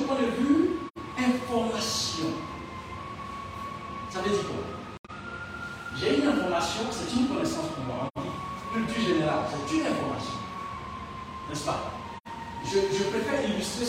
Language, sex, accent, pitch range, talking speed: French, male, French, 215-285 Hz, 125 wpm